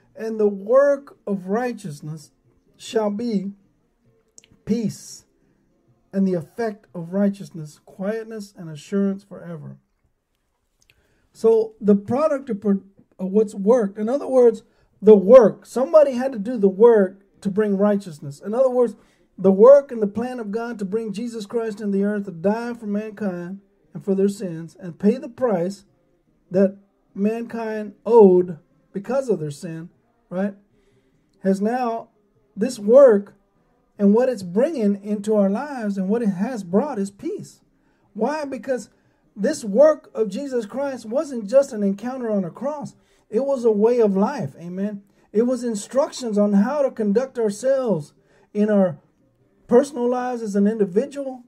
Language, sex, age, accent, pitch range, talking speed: English, male, 50-69, American, 195-240 Hz, 150 wpm